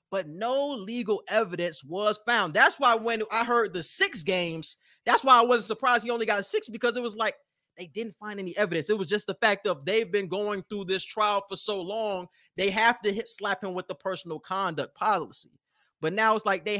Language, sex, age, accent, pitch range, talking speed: English, male, 20-39, American, 175-250 Hz, 220 wpm